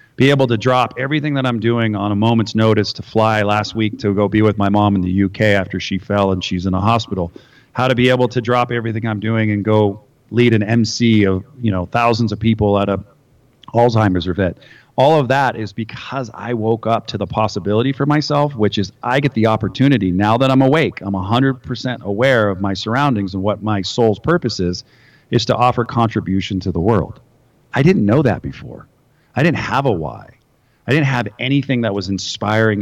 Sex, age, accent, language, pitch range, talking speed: male, 40-59, American, English, 100-125 Hz, 215 wpm